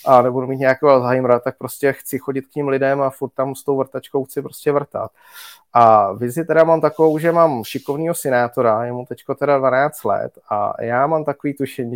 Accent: native